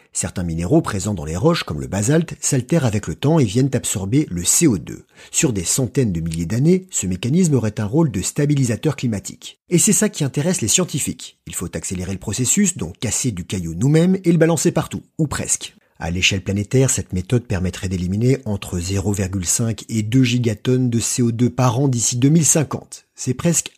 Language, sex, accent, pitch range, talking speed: French, male, French, 105-155 Hz, 190 wpm